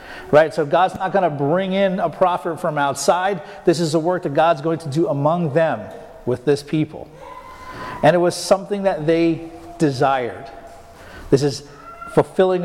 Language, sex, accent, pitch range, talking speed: English, male, American, 160-205 Hz, 170 wpm